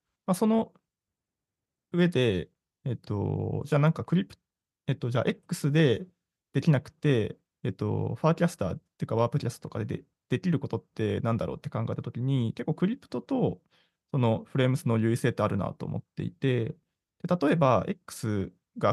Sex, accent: male, native